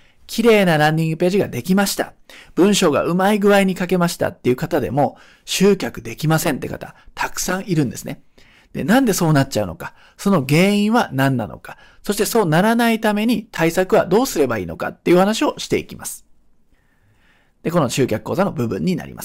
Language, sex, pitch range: Japanese, male, 165-225 Hz